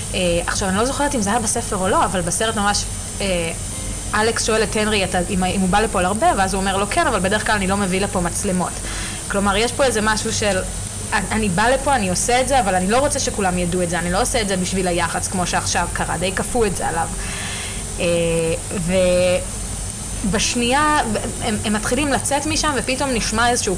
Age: 20-39